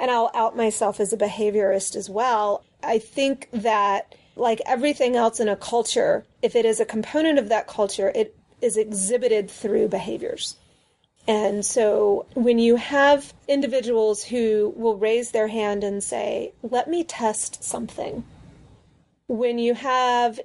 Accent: American